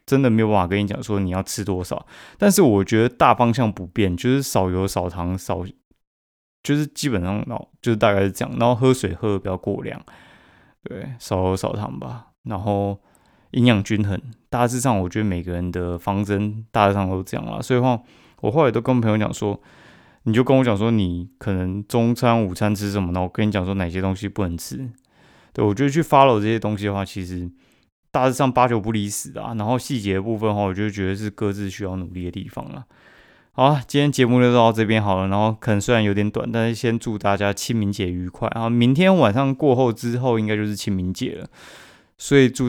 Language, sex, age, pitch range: Chinese, male, 20-39, 95-120 Hz